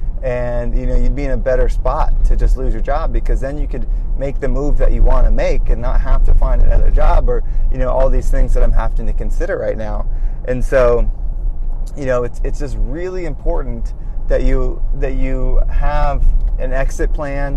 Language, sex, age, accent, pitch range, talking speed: English, male, 20-39, American, 115-140 Hz, 215 wpm